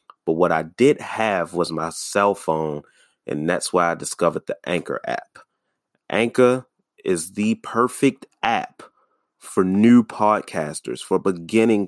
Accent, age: American, 30-49